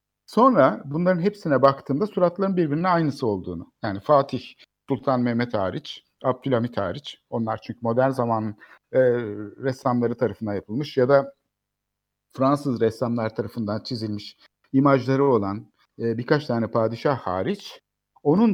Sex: male